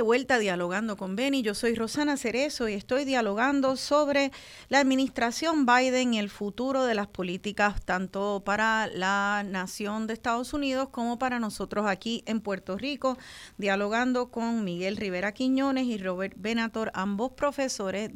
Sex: female